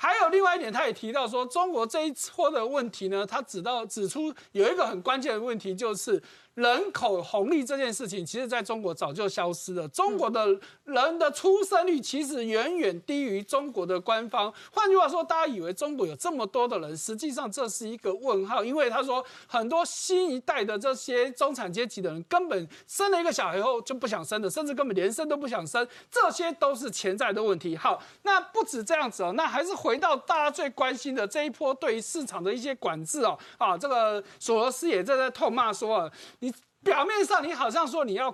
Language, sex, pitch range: Chinese, male, 220-335 Hz